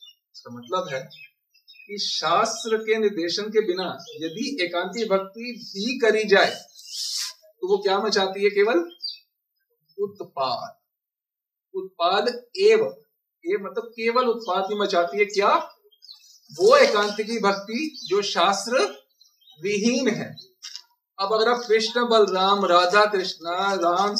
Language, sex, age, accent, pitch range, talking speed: Hindi, male, 50-69, native, 205-270 Hz, 120 wpm